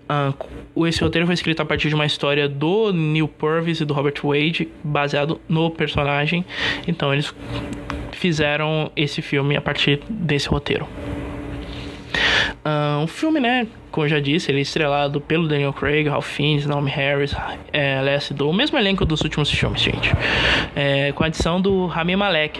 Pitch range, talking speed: 145-165 Hz, 170 wpm